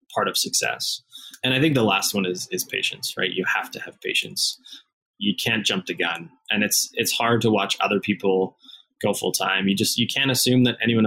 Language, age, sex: English, 20-39, male